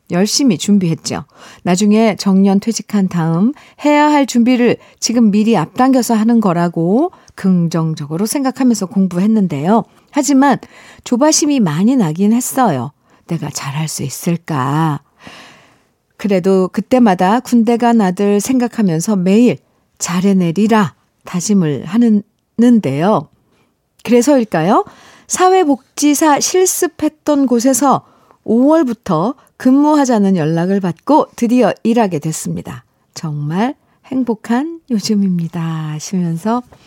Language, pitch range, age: Korean, 170-235 Hz, 50-69